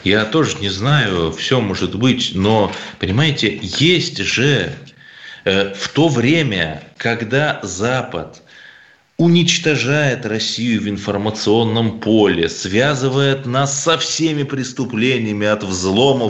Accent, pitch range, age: native, 110-145 Hz, 30-49